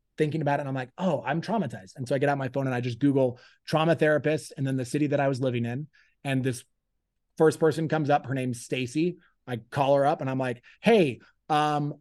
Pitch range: 125-155 Hz